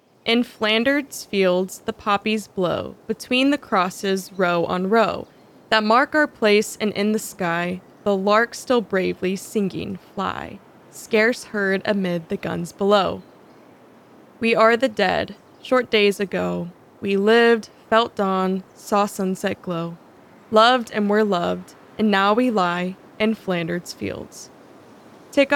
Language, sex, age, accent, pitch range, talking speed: English, female, 20-39, American, 185-225 Hz, 135 wpm